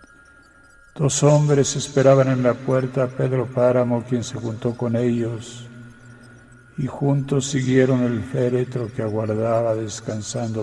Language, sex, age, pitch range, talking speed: Spanish, male, 60-79, 95-125 Hz, 125 wpm